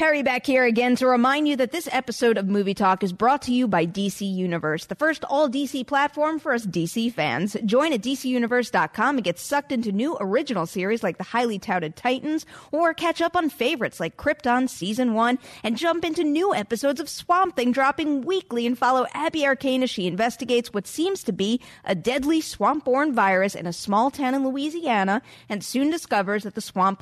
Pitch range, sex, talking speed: 200-280 Hz, female, 200 wpm